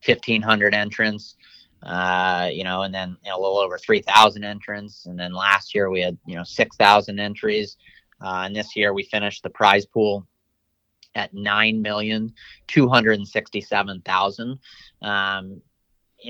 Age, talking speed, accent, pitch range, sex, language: 30-49, 120 wpm, American, 100-110 Hz, male, English